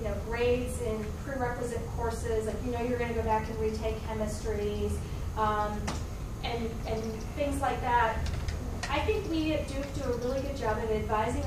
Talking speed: 180 wpm